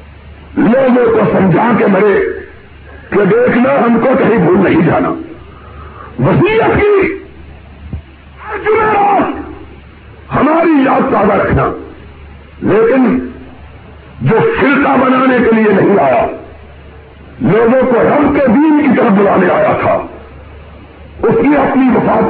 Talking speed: 115 wpm